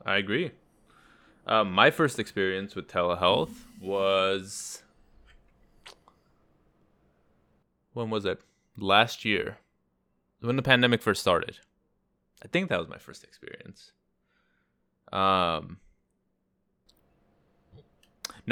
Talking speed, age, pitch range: 90 wpm, 20-39, 85-110 Hz